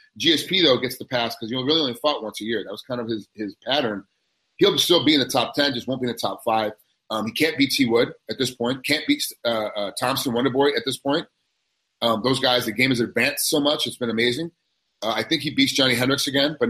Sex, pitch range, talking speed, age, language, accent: male, 115-140 Hz, 260 wpm, 30-49, English, American